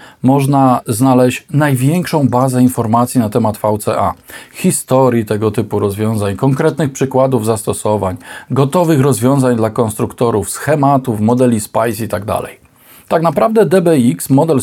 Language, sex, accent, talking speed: Polish, male, native, 110 wpm